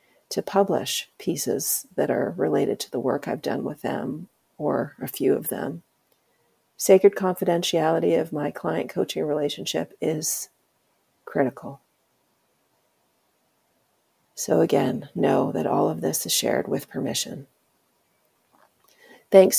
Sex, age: female, 40-59